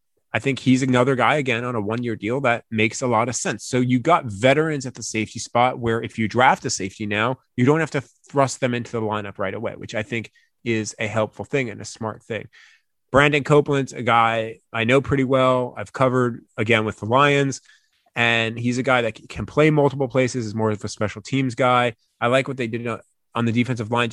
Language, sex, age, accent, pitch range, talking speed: English, male, 20-39, American, 115-140 Hz, 230 wpm